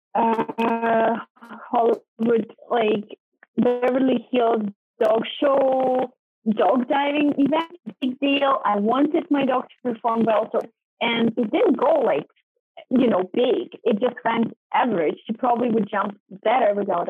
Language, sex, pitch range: English, female, 210-275 Hz